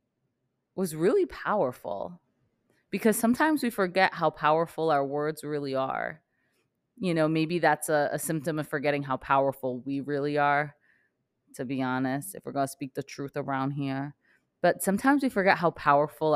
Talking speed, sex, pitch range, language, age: 160 wpm, female, 145-180 Hz, English, 20-39